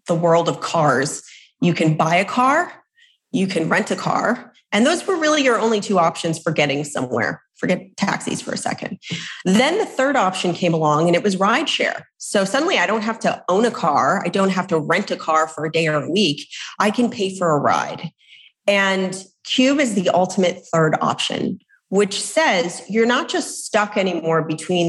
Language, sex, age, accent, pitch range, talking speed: English, female, 30-49, American, 165-220 Hz, 205 wpm